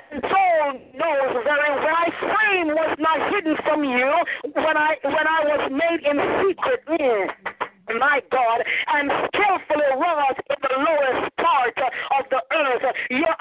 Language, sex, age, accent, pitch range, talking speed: English, female, 50-69, American, 270-335 Hz, 150 wpm